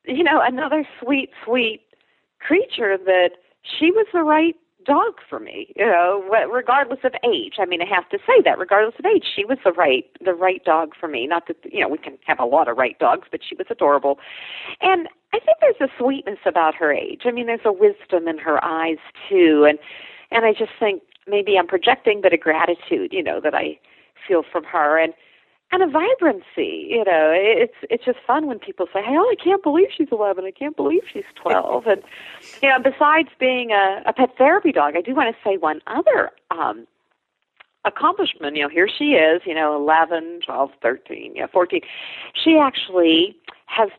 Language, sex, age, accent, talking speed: English, female, 40-59, American, 200 wpm